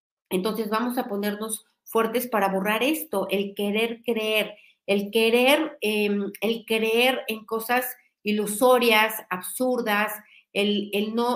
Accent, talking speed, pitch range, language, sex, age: Mexican, 120 wpm, 195-225 Hz, Spanish, female, 40-59